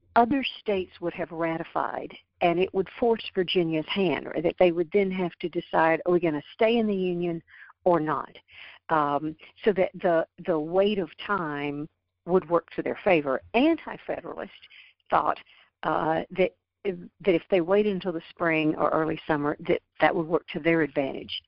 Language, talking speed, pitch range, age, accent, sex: English, 180 wpm, 155-200 Hz, 60-79, American, female